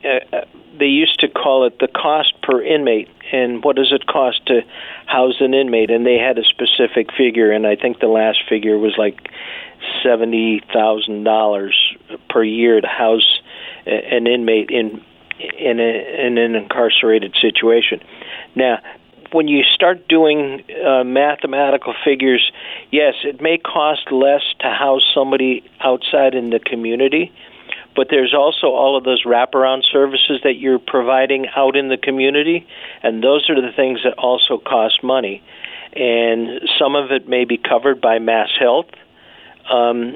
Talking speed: 150 wpm